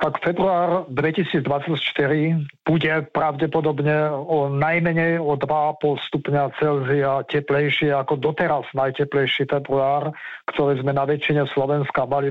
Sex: male